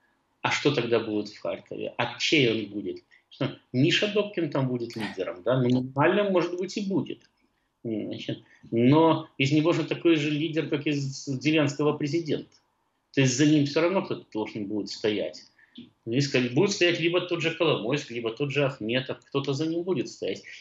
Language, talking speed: Russian, 180 wpm